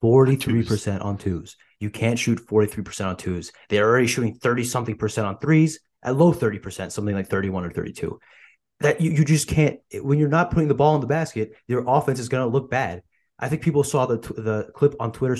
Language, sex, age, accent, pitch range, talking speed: English, male, 30-49, American, 110-135 Hz, 220 wpm